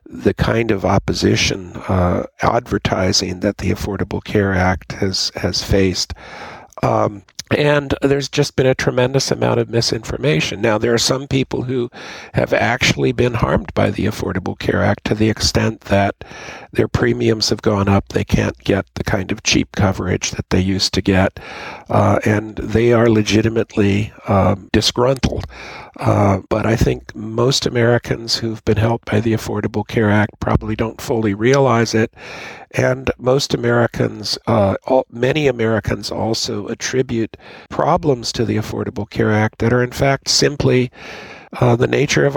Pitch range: 105-125 Hz